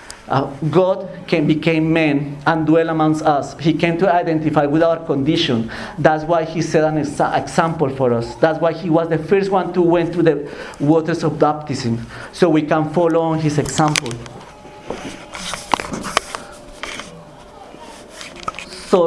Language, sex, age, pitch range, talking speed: English, male, 50-69, 155-185 Hz, 150 wpm